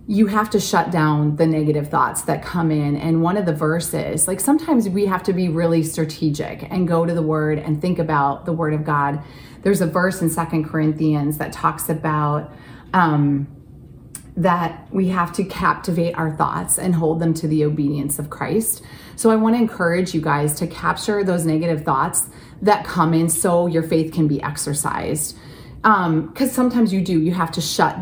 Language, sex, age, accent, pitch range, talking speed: English, female, 30-49, American, 150-175 Hz, 195 wpm